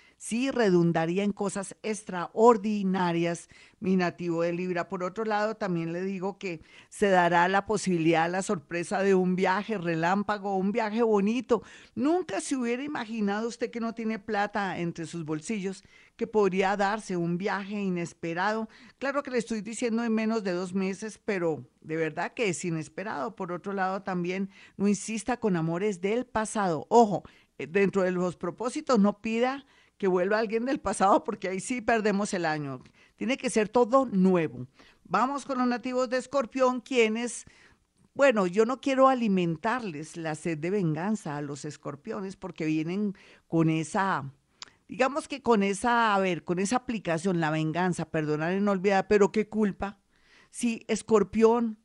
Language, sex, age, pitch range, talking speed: Spanish, female, 50-69, 180-225 Hz, 160 wpm